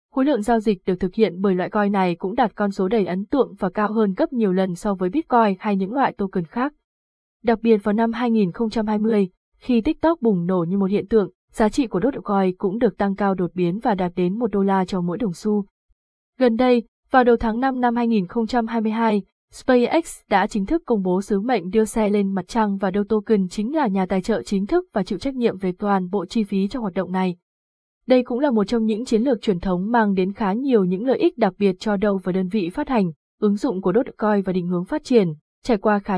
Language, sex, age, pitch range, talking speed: Vietnamese, female, 20-39, 190-235 Hz, 250 wpm